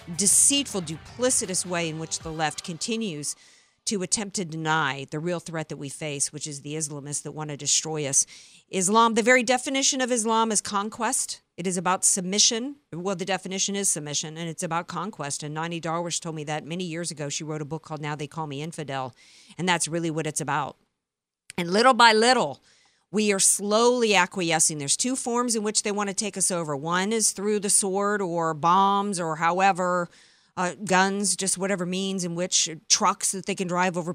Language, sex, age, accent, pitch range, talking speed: English, female, 50-69, American, 160-200 Hz, 200 wpm